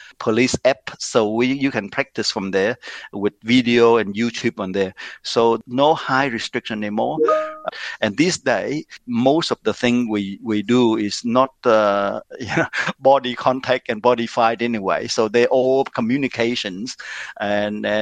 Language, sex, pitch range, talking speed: Filipino, male, 110-135 Hz, 145 wpm